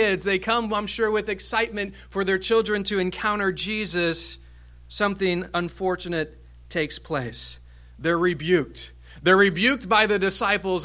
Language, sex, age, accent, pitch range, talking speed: English, male, 40-59, American, 160-215 Hz, 125 wpm